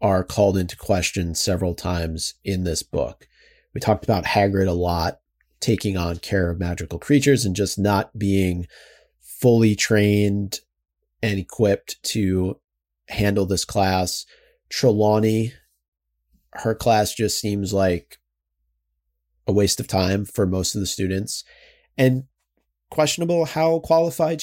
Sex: male